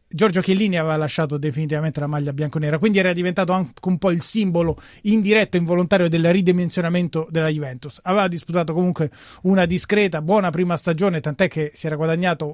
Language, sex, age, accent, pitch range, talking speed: Italian, male, 30-49, native, 160-195 Hz, 170 wpm